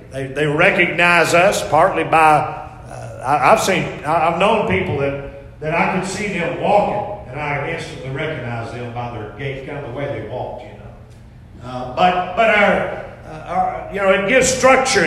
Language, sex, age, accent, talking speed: English, male, 50-69, American, 180 wpm